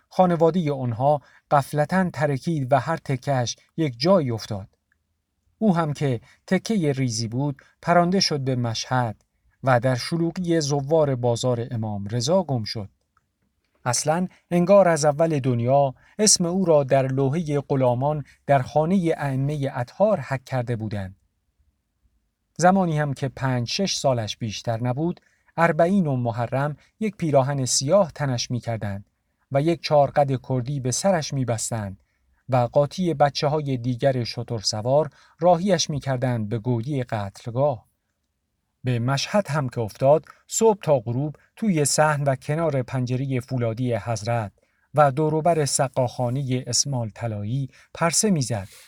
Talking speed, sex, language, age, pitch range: 130 wpm, male, Persian, 50-69, 120-155 Hz